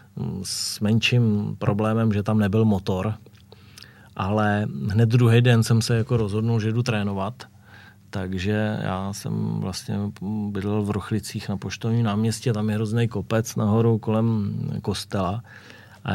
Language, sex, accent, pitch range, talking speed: Czech, male, native, 105-115 Hz, 135 wpm